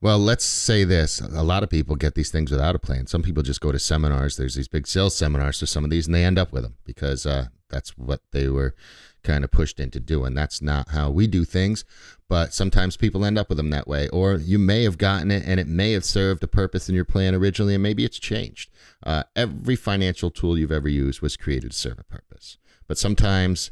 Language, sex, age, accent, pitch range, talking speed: English, male, 40-59, American, 75-95 Hz, 245 wpm